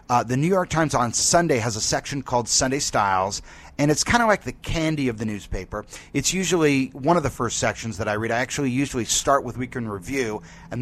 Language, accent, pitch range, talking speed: English, American, 110-140 Hz, 225 wpm